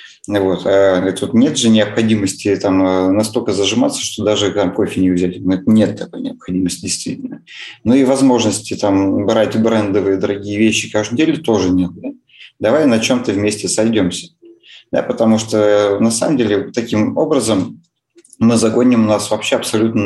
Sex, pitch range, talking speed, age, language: male, 105-130 Hz, 150 wpm, 20-39, Russian